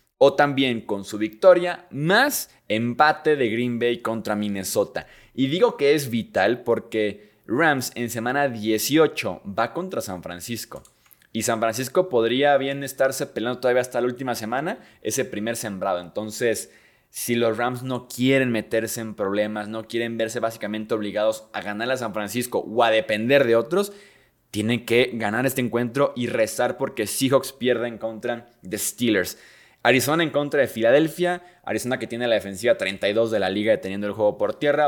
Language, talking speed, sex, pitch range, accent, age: Spanish, 165 wpm, male, 110-135 Hz, Mexican, 20-39